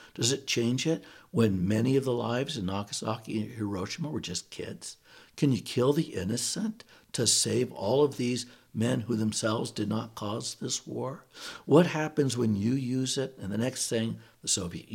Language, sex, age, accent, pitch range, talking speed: English, male, 60-79, American, 105-130 Hz, 185 wpm